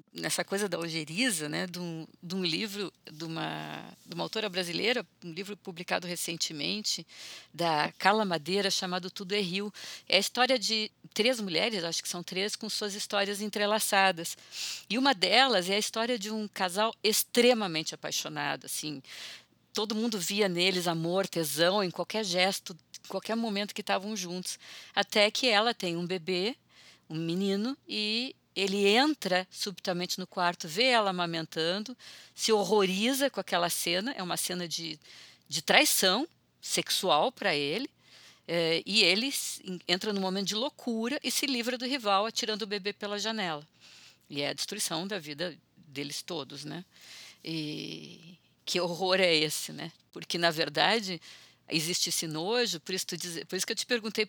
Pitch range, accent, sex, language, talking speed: 170-215 Hz, Brazilian, female, Portuguese, 165 wpm